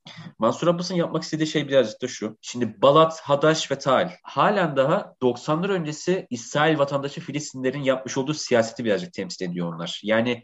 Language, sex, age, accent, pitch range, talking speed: Turkish, male, 30-49, native, 125-170 Hz, 160 wpm